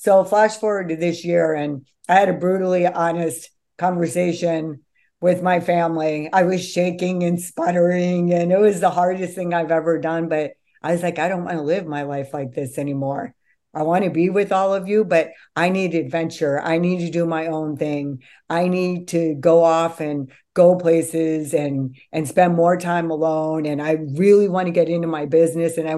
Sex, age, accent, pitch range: female, 50-69, American, 155-180 Hz